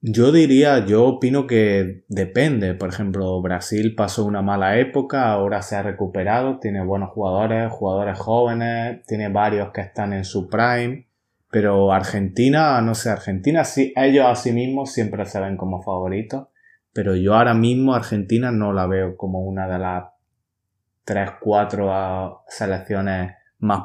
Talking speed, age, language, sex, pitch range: 150 wpm, 20-39, Spanish, male, 95-115 Hz